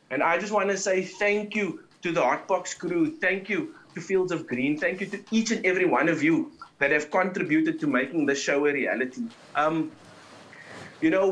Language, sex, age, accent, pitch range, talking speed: English, male, 30-49, South African, 155-210 Hz, 210 wpm